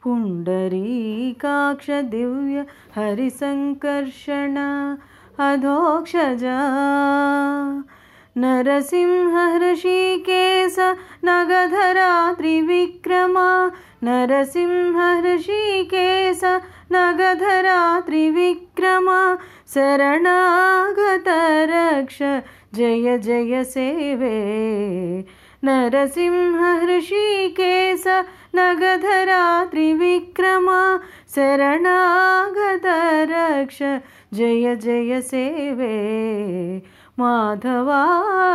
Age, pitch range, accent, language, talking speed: 30-49, 245-360 Hz, native, Telugu, 35 wpm